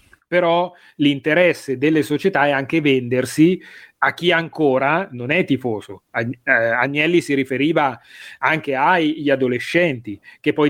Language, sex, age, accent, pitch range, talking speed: Italian, male, 30-49, native, 135-175 Hz, 120 wpm